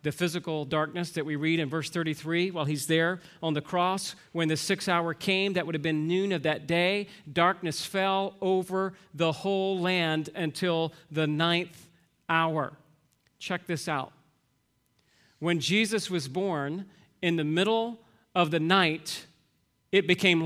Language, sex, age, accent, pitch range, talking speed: English, male, 40-59, American, 160-195 Hz, 155 wpm